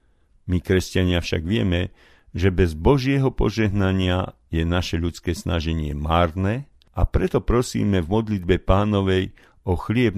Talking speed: 125 wpm